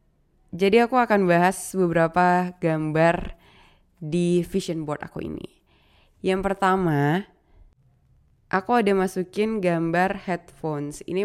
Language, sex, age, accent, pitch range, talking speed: Indonesian, female, 20-39, native, 165-200 Hz, 100 wpm